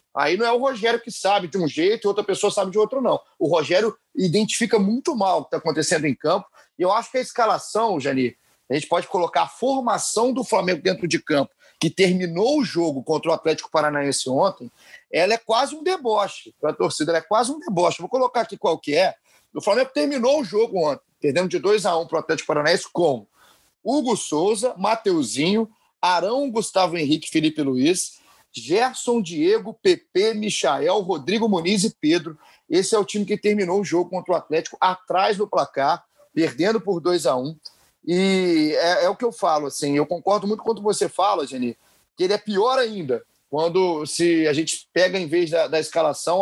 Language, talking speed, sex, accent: Portuguese, 200 wpm, male, Brazilian